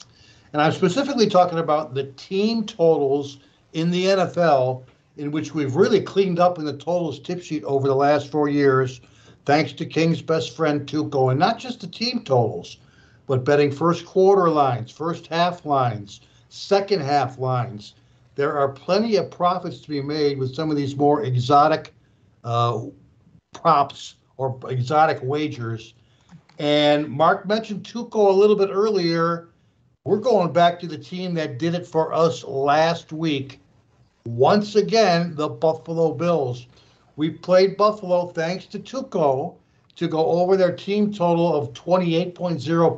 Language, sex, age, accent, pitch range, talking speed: English, male, 60-79, American, 135-180 Hz, 150 wpm